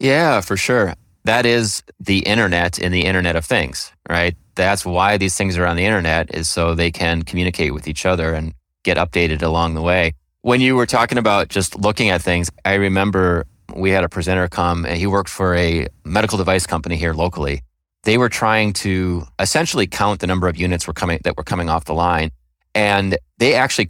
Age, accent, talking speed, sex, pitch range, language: 30-49, American, 205 wpm, male, 85-100 Hz, English